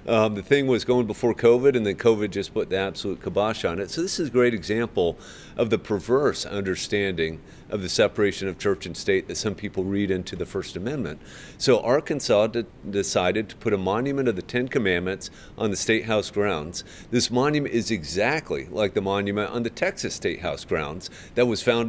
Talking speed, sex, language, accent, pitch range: 205 wpm, male, English, American, 100-115 Hz